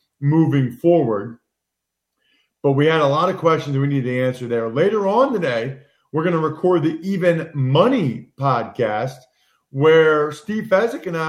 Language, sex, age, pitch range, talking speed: English, male, 40-59, 140-185 Hz, 155 wpm